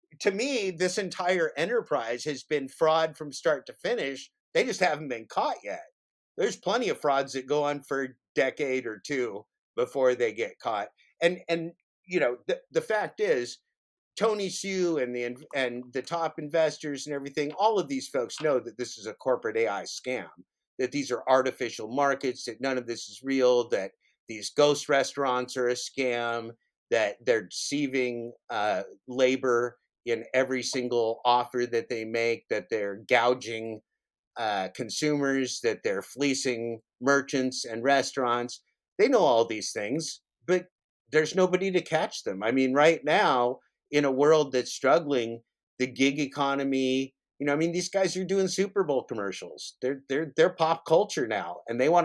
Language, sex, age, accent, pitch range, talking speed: English, male, 50-69, American, 125-165 Hz, 170 wpm